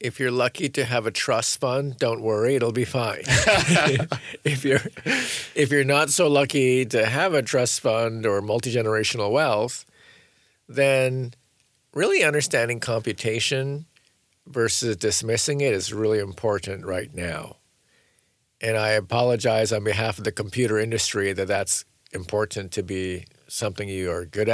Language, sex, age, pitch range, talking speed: English, male, 50-69, 110-140 Hz, 140 wpm